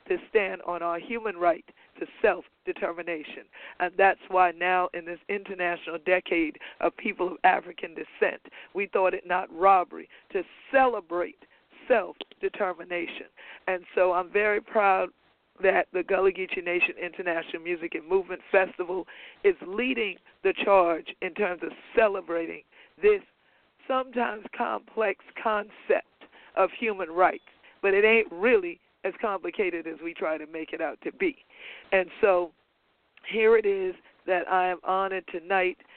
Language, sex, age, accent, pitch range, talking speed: English, female, 50-69, American, 175-250 Hz, 140 wpm